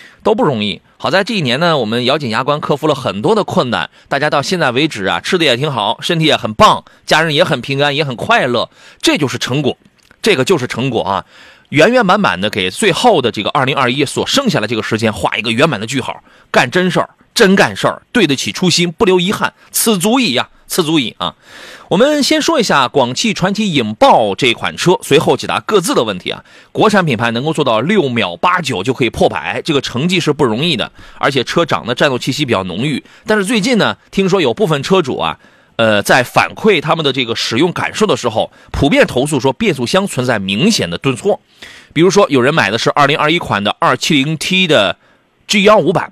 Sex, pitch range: male, 120-185 Hz